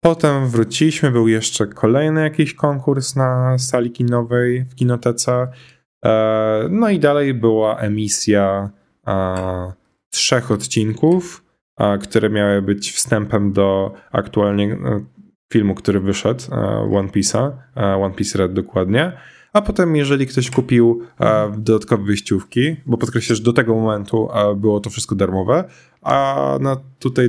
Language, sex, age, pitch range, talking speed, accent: Polish, male, 10-29, 100-130 Hz, 115 wpm, native